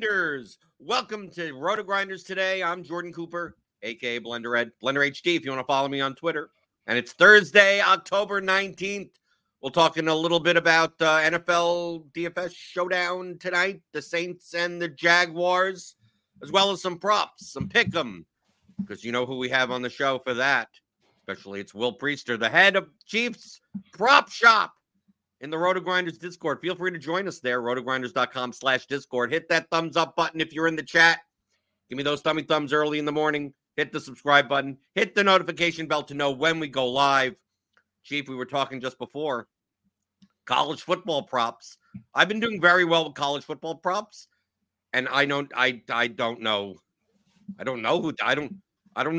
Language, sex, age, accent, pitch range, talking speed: English, male, 50-69, American, 135-180 Hz, 180 wpm